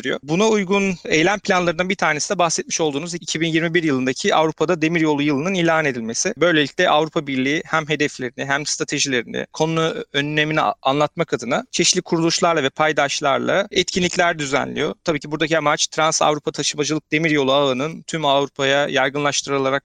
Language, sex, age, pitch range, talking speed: Turkish, male, 40-59, 140-165 Hz, 135 wpm